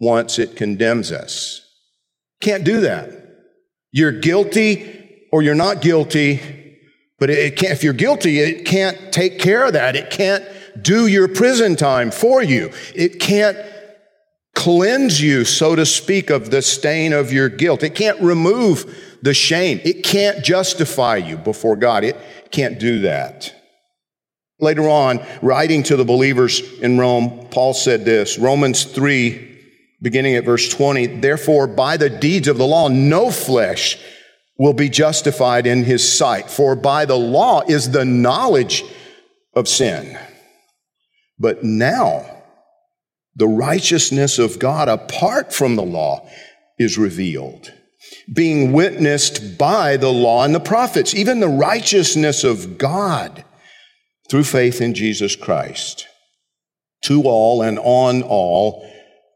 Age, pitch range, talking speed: 50-69, 125-185 Hz, 135 wpm